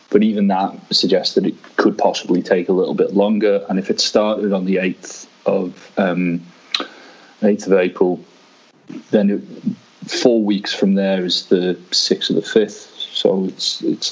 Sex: male